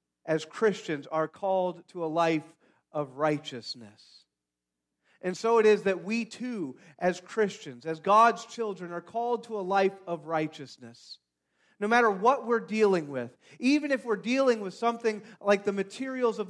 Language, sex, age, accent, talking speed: English, male, 40-59, American, 160 wpm